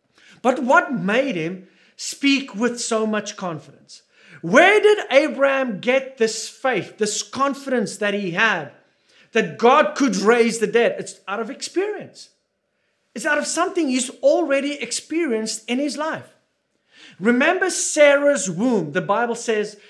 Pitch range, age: 205-280 Hz, 40-59